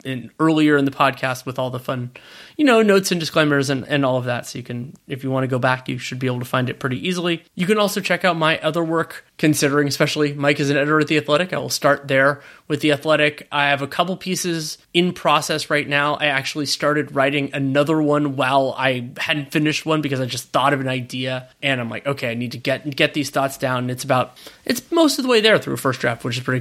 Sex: male